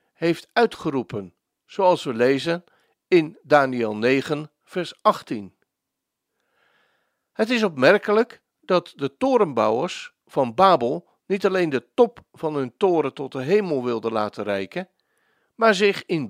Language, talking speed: Dutch, 125 wpm